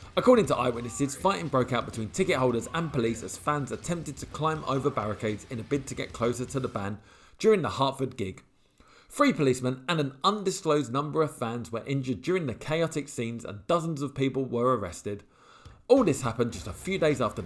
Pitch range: 115-150 Hz